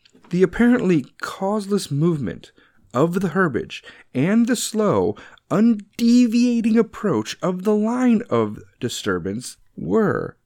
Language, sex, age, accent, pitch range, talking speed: English, male, 40-59, American, 130-205 Hz, 105 wpm